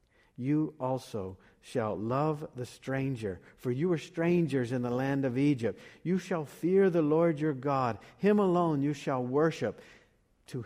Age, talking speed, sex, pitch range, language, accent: 50-69, 160 wpm, male, 120-160 Hz, English, American